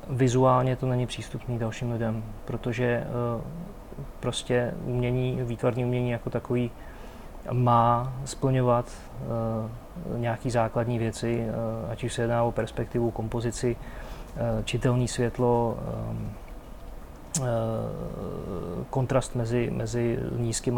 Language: Czech